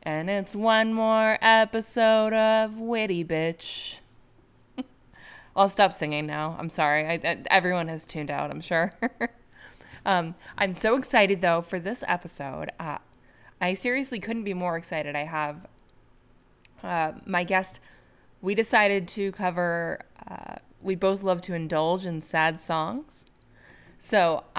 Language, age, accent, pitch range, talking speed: English, 20-39, American, 165-210 Hz, 135 wpm